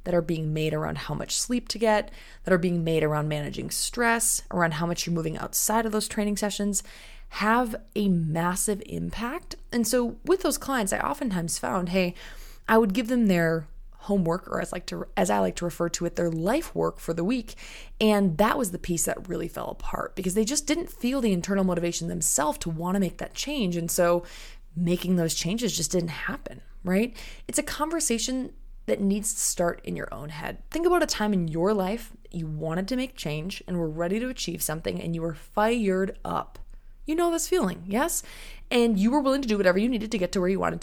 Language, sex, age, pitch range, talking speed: English, female, 20-39, 175-230 Hz, 220 wpm